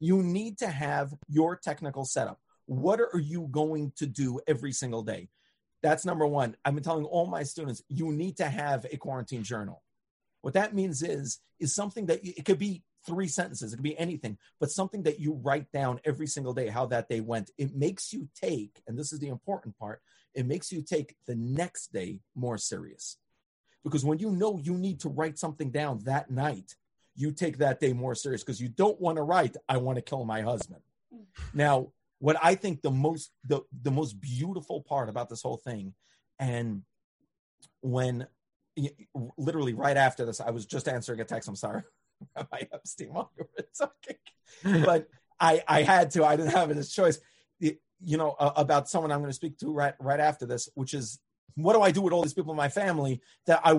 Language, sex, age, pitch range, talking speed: English, male, 40-59, 130-165 Hz, 200 wpm